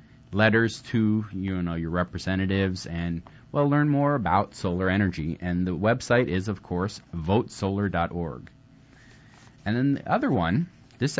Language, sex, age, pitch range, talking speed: English, male, 30-49, 95-135 Hz, 140 wpm